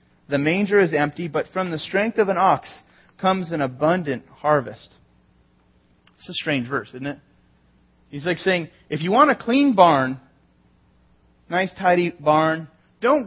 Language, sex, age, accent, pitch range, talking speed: English, male, 30-49, American, 140-205 Hz, 155 wpm